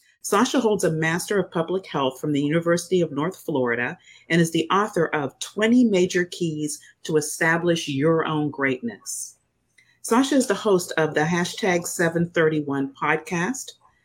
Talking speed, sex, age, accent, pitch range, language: 150 wpm, female, 40-59, American, 150-195 Hz, English